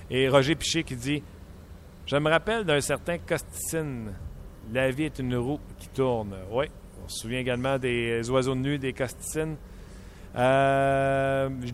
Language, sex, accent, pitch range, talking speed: French, male, Canadian, 110-135 Hz, 165 wpm